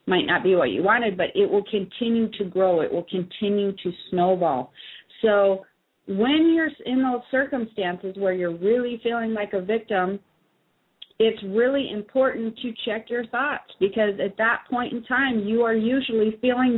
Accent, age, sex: American, 40-59, female